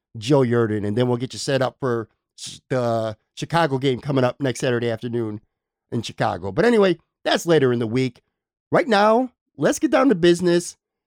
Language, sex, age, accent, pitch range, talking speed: English, male, 50-69, American, 135-180 Hz, 185 wpm